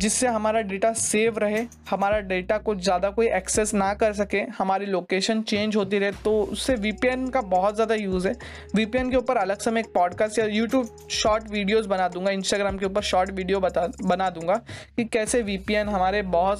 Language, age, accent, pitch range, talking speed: Hindi, 20-39, native, 185-230 Hz, 195 wpm